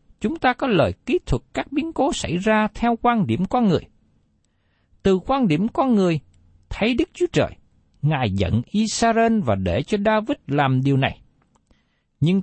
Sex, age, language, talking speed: male, 60-79, Vietnamese, 175 wpm